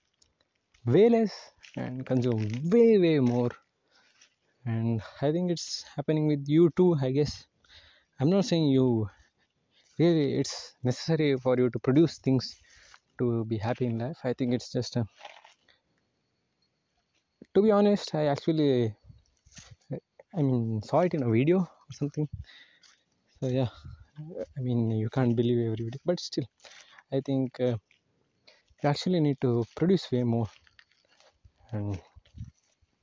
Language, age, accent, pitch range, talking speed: English, 20-39, Indian, 115-150 Hz, 135 wpm